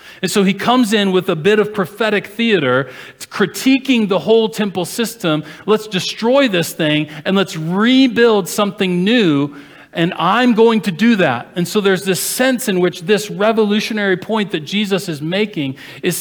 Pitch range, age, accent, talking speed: 155-215 Hz, 40-59, American, 175 wpm